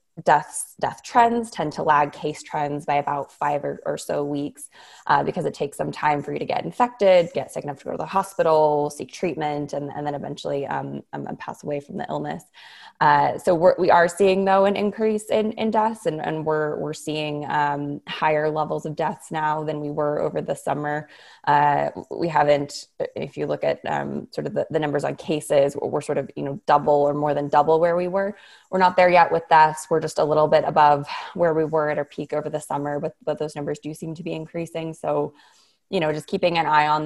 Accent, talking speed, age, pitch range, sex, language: American, 230 wpm, 20-39, 145-170 Hz, female, English